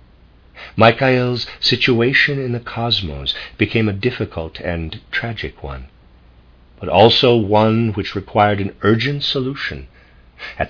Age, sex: 50-69, male